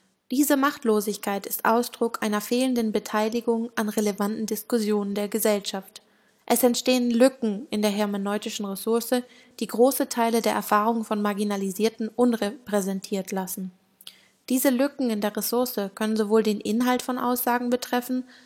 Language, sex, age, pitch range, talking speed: German, female, 20-39, 205-240 Hz, 130 wpm